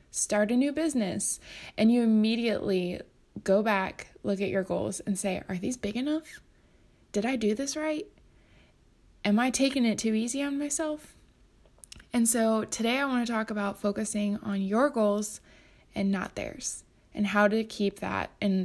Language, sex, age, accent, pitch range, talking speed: English, female, 20-39, American, 200-245 Hz, 170 wpm